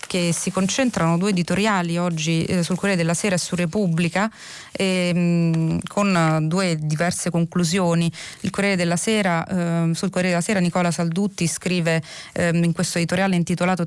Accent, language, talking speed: native, Italian, 165 wpm